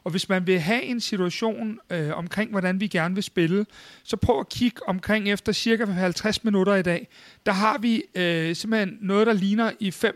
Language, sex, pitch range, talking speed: Danish, male, 175-210 Hz, 205 wpm